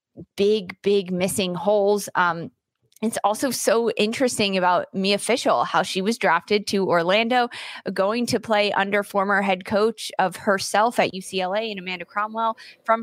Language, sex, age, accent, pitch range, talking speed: English, female, 20-39, American, 180-210 Hz, 150 wpm